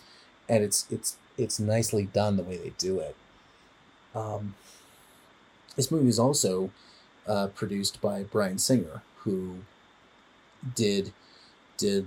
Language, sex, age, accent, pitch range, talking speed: English, male, 30-49, American, 100-115 Hz, 120 wpm